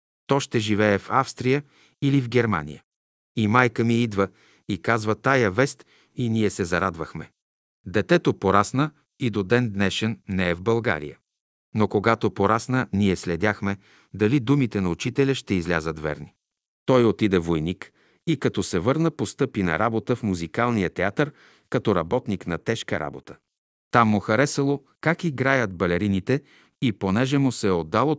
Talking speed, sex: 155 wpm, male